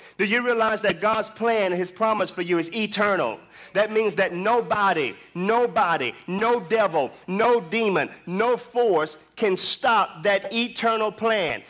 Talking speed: 145 wpm